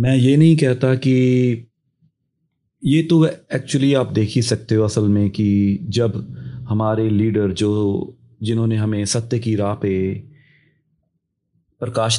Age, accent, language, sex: 30-49, native, Hindi, male